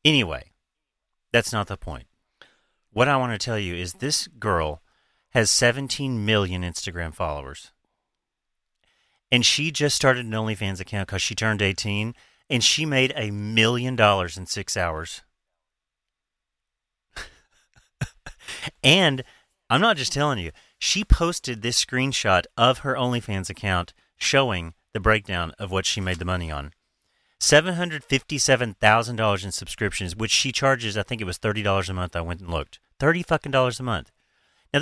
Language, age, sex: English, 30-49, male